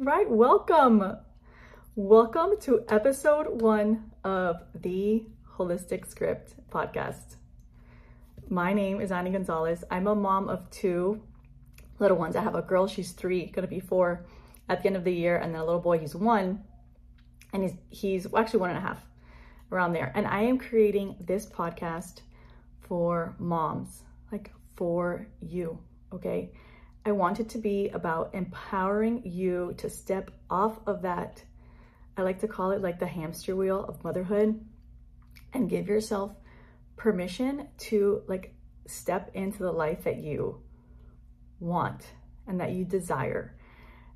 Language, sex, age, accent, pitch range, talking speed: English, female, 30-49, American, 165-210 Hz, 145 wpm